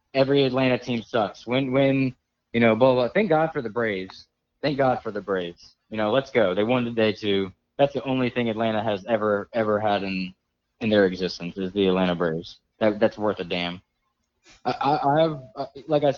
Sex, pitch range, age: male, 110-150 Hz, 20-39